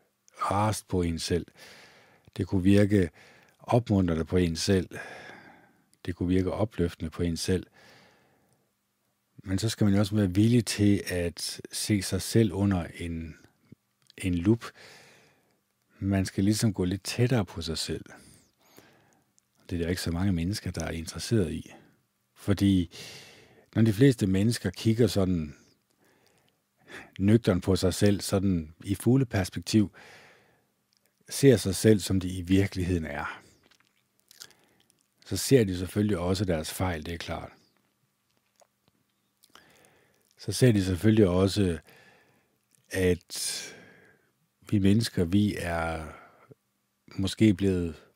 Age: 50-69